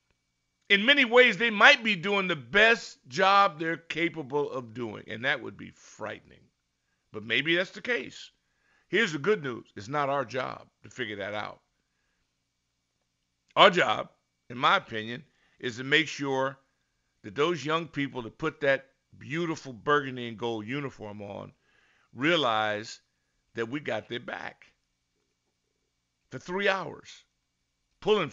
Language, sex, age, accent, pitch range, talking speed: English, male, 50-69, American, 110-180 Hz, 145 wpm